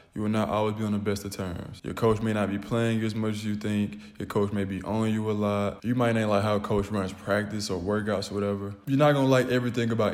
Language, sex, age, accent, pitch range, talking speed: English, male, 20-39, American, 100-110 Hz, 290 wpm